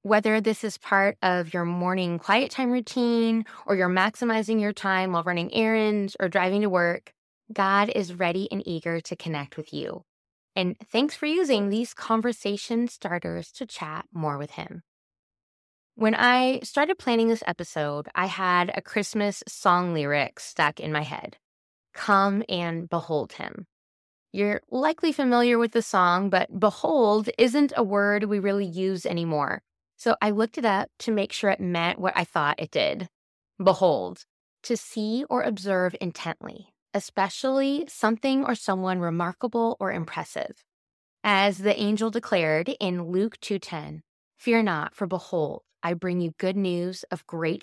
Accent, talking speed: American, 155 wpm